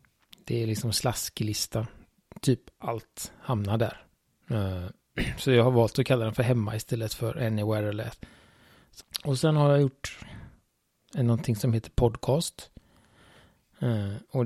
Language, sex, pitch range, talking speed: Swedish, male, 110-135 Hz, 130 wpm